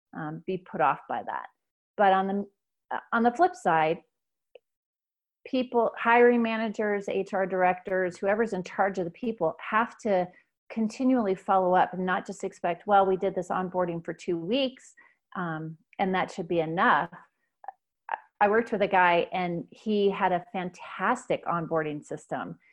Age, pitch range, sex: 30-49, 170-210 Hz, female